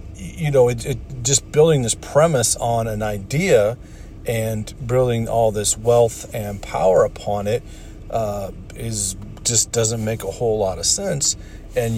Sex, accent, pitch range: male, American, 105-120 Hz